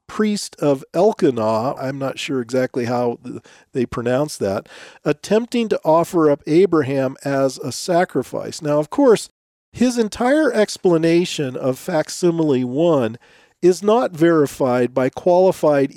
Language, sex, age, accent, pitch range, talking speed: English, male, 40-59, American, 130-175 Hz, 125 wpm